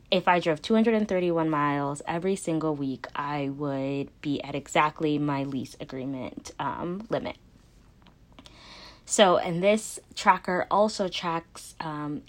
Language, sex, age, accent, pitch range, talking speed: English, female, 20-39, American, 150-185 Hz, 120 wpm